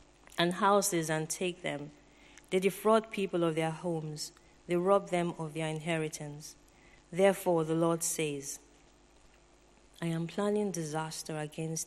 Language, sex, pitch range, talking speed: English, female, 155-180 Hz, 130 wpm